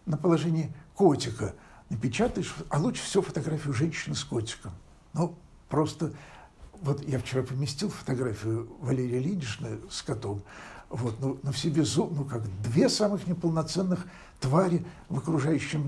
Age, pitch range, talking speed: 60-79, 120-170 Hz, 125 wpm